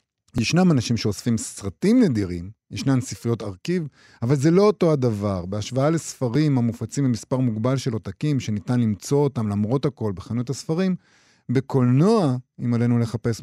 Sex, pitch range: male, 110-145 Hz